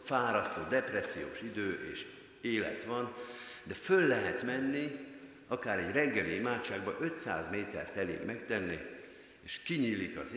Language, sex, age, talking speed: Hungarian, male, 50-69, 120 wpm